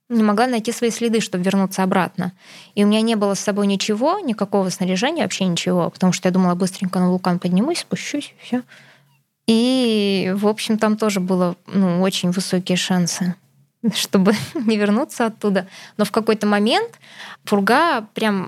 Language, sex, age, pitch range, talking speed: Russian, female, 20-39, 185-220 Hz, 160 wpm